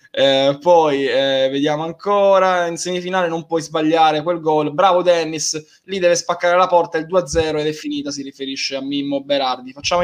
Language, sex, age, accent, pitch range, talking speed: Italian, male, 20-39, native, 155-195 Hz, 185 wpm